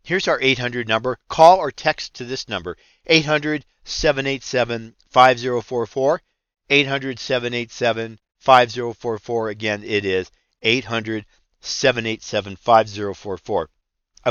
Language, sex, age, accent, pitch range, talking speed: English, male, 50-69, American, 110-145 Hz, 65 wpm